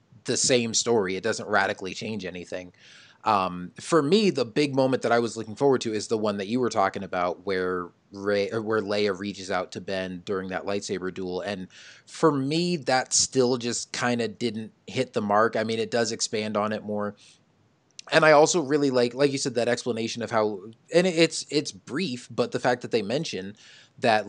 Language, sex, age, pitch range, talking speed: English, male, 20-39, 100-130 Hz, 210 wpm